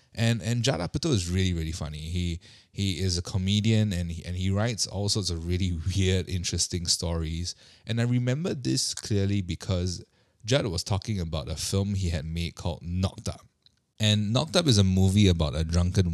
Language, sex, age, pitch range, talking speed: English, male, 20-39, 85-115 Hz, 195 wpm